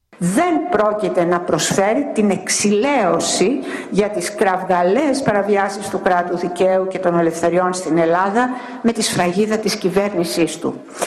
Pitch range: 150-205 Hz